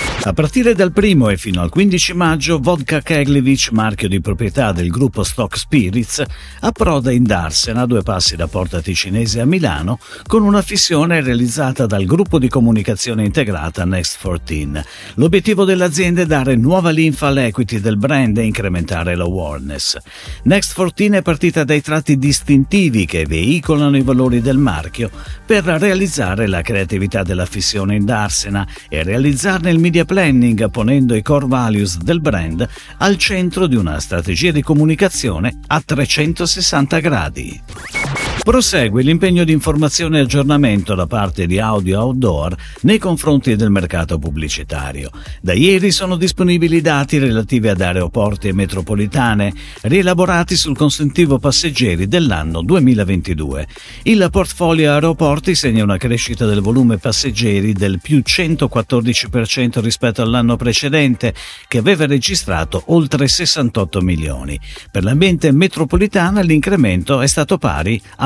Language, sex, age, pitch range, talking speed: Italian, male, 50-69, 100-160 Hz, 135 wpm